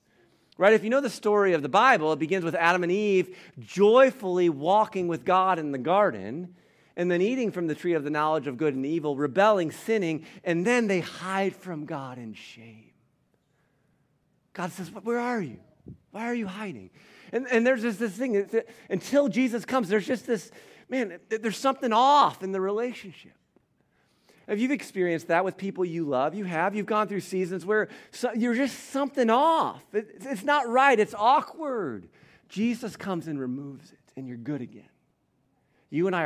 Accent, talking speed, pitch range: American, 180 wpm, 145-215 Hz